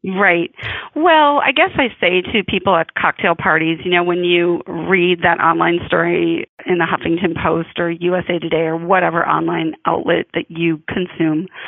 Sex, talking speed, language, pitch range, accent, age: female, 170 wpm, English, 175-230 Hz, American, 30-49